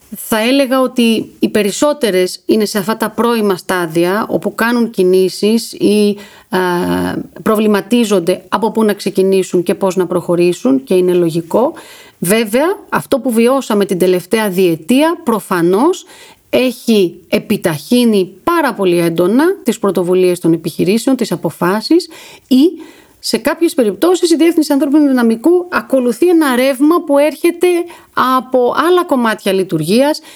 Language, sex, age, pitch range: Greek, female, 40-59, 190-275 Hz